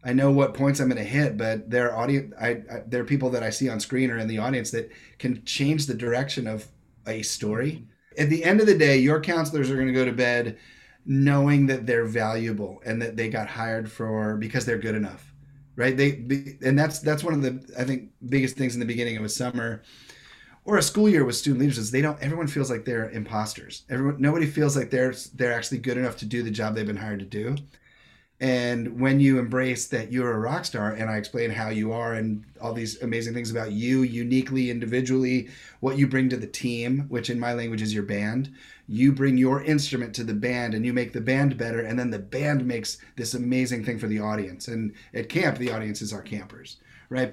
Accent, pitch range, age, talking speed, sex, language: American, 115-135 Hz, 30-49, 230 wpm, male, English